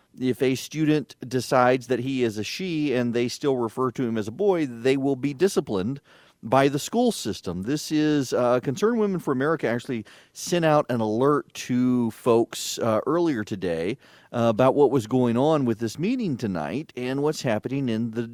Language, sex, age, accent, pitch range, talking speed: English, male, 40-59, American, 110-150 Hz, 190 wpm